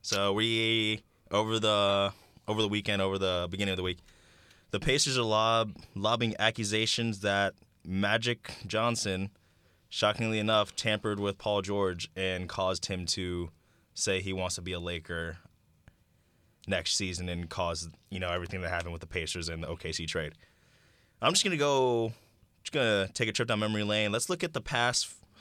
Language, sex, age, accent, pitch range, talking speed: English, male, 20-39, American, 90-115 Hz, 175 wpm